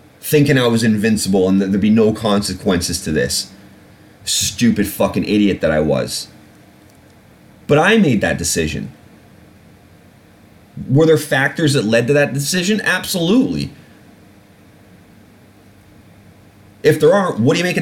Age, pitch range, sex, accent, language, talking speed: 30-49, 100-150 Hz, male, American, English, 130 wpm